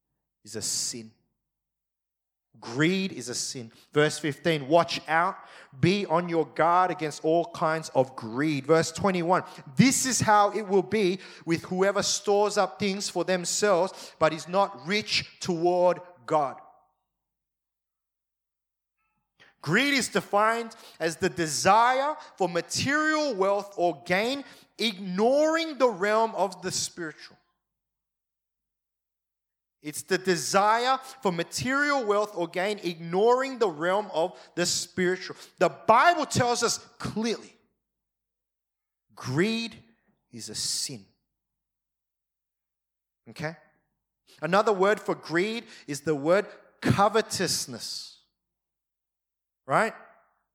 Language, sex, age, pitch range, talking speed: English, male, 30-49, 150-205 Hz, 110 wpm